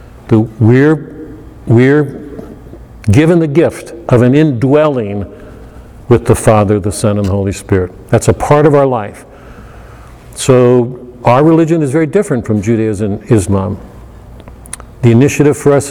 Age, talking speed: 50-69, 140 wpm